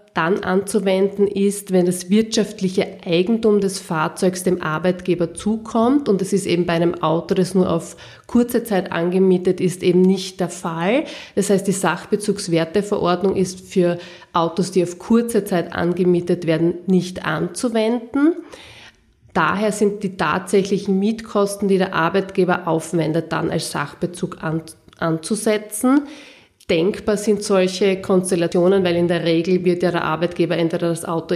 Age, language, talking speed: 30-49, German, 140 wpm